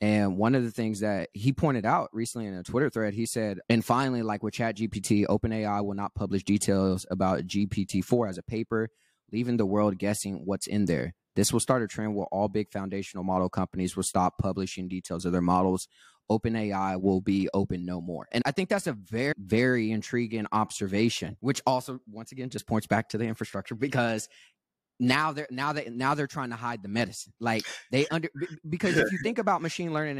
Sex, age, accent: male, 20-39, American